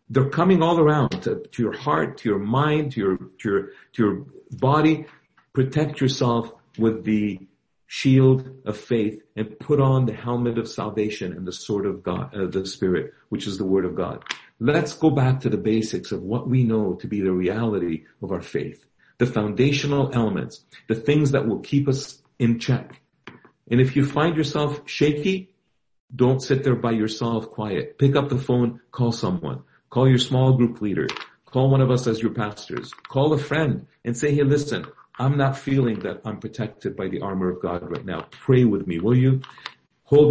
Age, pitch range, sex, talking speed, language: 50-69, 110-135 Hz, male, 195 wpm, English